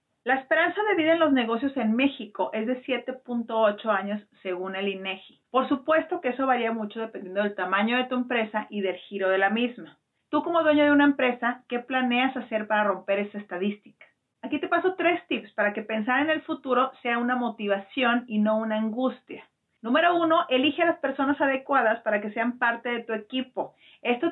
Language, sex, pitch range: Spanish, female, 215-285 Hz